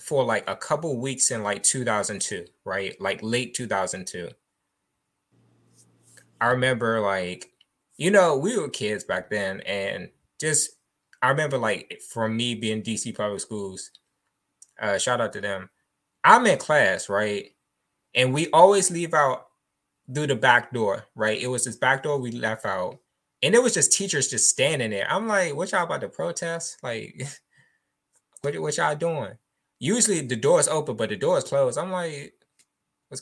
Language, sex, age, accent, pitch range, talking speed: English, male, 20-39, American, 120-175 Hz, 170 wpm